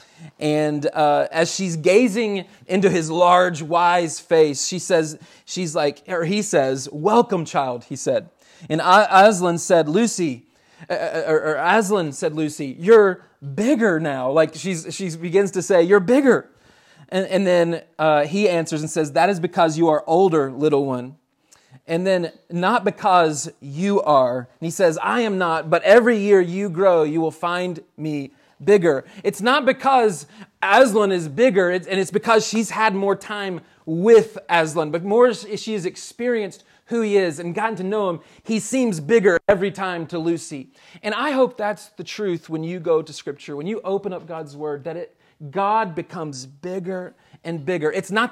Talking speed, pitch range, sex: 175 wpm, 155-200 Hz, male